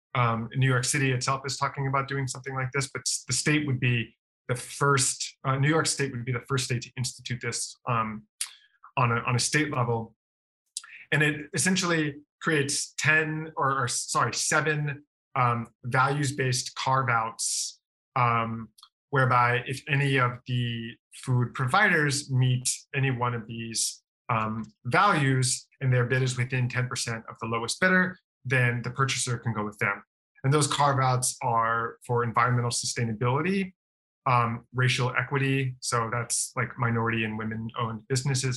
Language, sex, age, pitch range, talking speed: English, male, 20-39, 120-140 Hz, 160 wpm